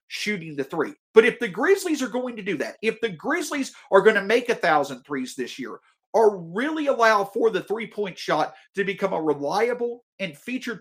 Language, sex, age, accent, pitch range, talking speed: English, male, 50-69, American, 175-245 Hz, 205 wpm